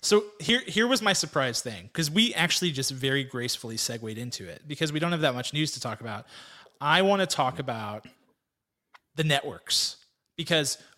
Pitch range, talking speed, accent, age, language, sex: 125-155 Hz, 185 wpm, American, 30-49, English, male